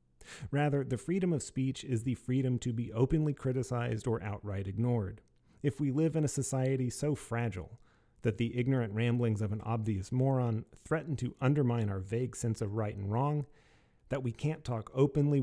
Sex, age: male, 40-59